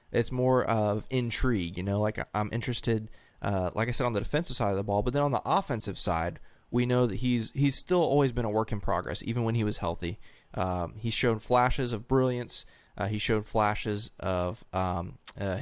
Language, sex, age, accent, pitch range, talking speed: English, male, 20-39, American, 100-120 Hz, 215 wpm